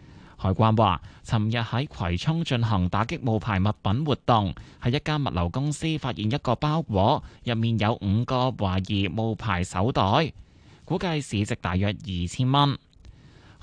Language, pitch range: Chinese, 100-135 Hz